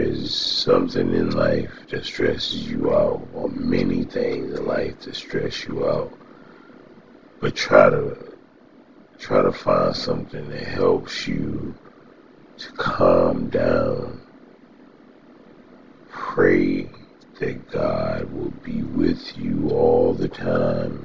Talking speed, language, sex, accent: 115 wpm, English, male, American